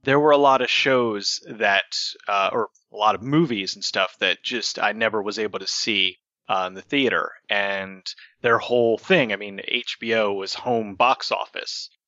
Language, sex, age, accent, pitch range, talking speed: English, male, 30-49, American, 100-135 Hz, 190 wpm